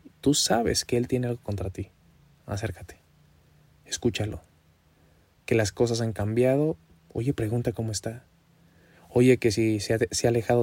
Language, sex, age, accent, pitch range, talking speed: Spanish, male, 20-39, Mexican, 95-120 Hz, 145 wpm